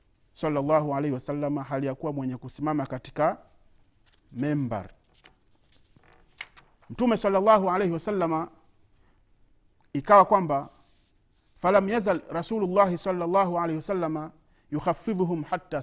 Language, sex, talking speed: Swahili, male, 90 wpm